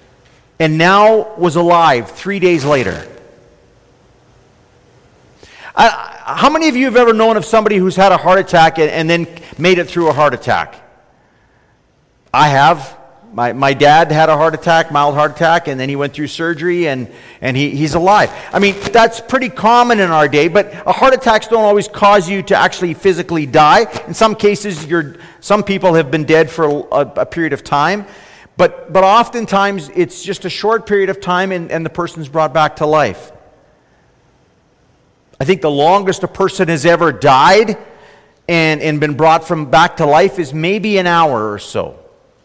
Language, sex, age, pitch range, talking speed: English, male, 40-59, 155-205 Hz, 185 wpm